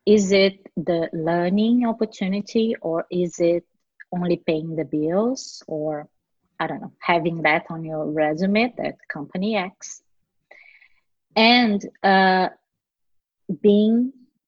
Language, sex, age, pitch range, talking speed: English, female, 30-49, 165-220 Hz, 110 wpm